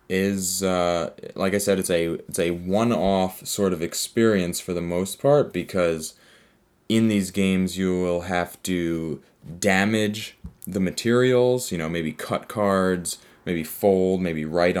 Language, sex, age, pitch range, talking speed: English, male, 20-39, 85-100 Hz, 145 wpm